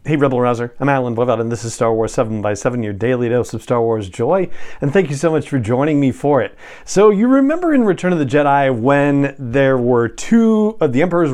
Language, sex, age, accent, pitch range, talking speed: English, male, 40-59, American, 120-150 Hz, 235 wpm